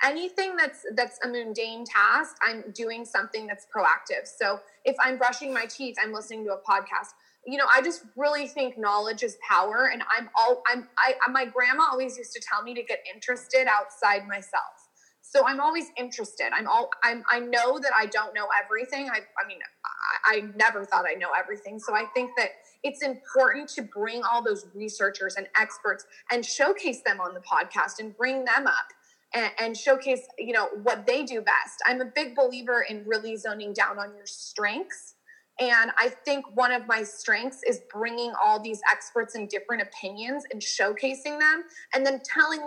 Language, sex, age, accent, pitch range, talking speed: English, female, 20-39, American, 220-280 Hz, 190 wpm